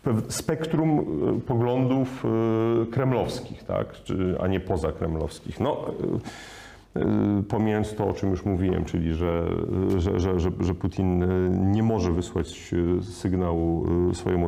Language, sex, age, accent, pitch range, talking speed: Polish, male, 40-59, native, 85-115 Hz, 110 wpm